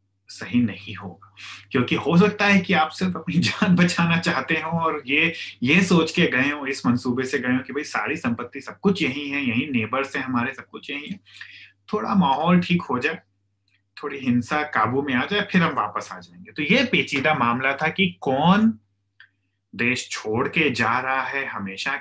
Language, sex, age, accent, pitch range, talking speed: Hindi, male, 30-49, native, 100-165 Hz, 195 wpm